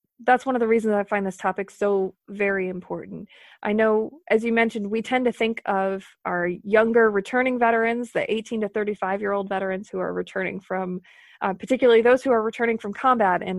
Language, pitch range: English, 195-230 Hz